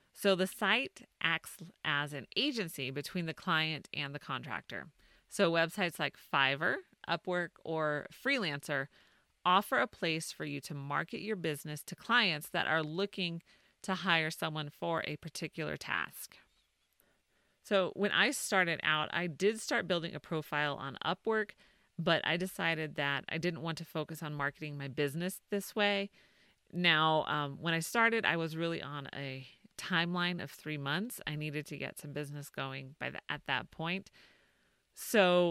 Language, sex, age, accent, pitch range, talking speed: English, female, 30-49, American, 150-180 Hz, 160 wpm